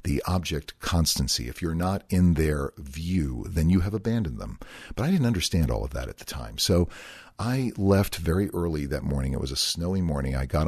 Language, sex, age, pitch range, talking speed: English, male, 50-69, 70-95 Hz, 215 wpm